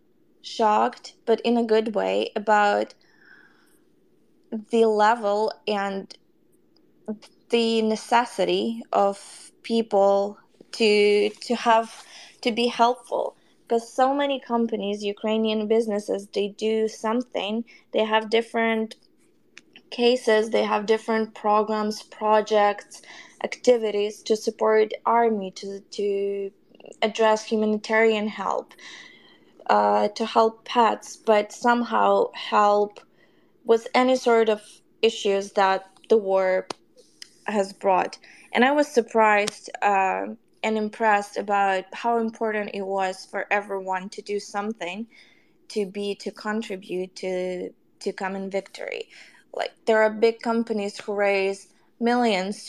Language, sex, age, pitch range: English, female, 20-39, 200-230 Hz